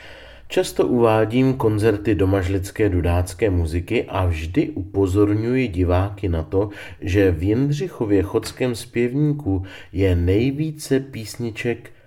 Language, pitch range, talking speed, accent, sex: Czech, 90-110 Hz, 100 wpm, native, male